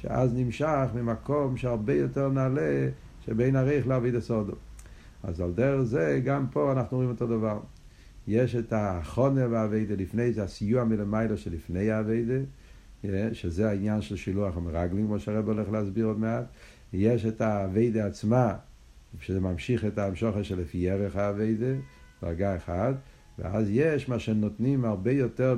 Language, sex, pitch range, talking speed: Hebrew, male, 105-130 Hz, 140 wpm